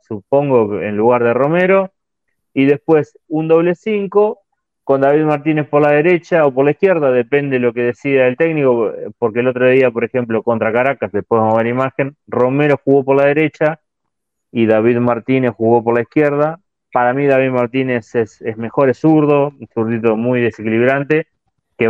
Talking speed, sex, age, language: 180 wpm, male, 30-49, Spanish